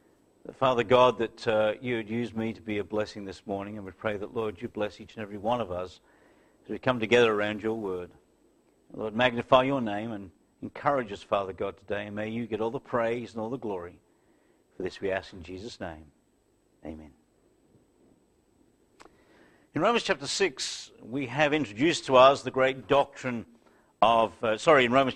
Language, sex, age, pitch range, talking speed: English, male, 50-69, 115-145 Hz, 190 wpm